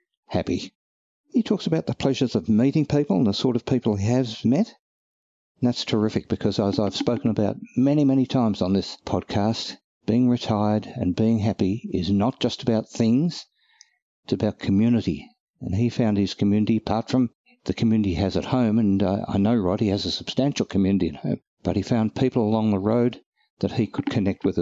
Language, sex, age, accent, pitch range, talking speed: English, male, 60-79, Australian, 100-135 Hz, 195 wpm